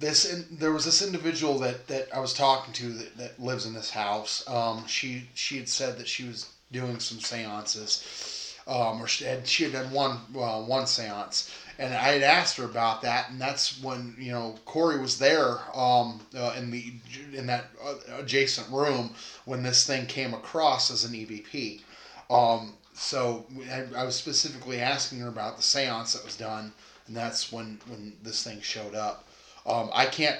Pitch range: 115-135 Hz